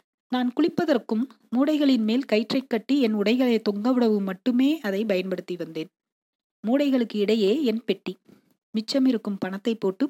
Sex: female